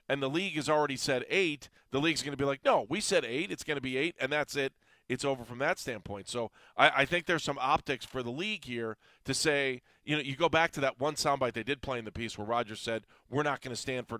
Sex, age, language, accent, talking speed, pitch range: male, 40-59, English, American, 285 wpm, 115-145 Hz